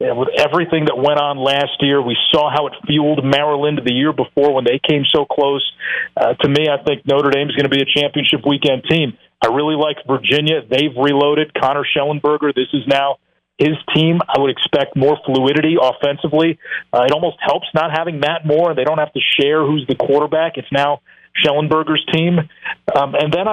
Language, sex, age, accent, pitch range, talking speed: English, male, 40-59, American, 135-155 Hz, 200 wpm